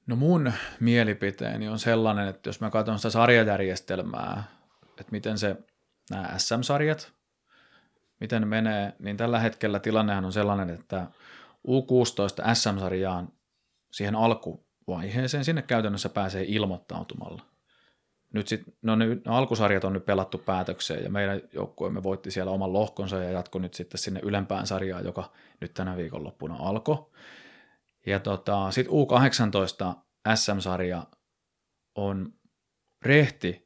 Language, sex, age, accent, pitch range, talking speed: Finnish, male, 30-49, native, 95-115 Hz, 120 wpm